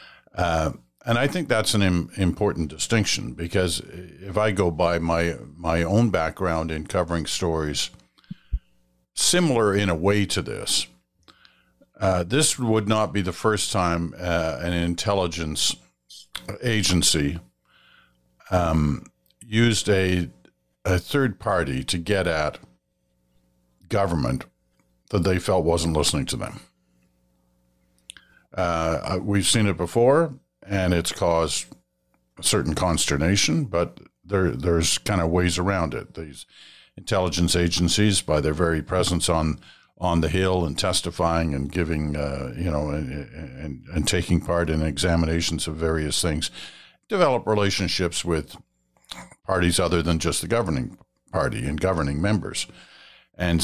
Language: English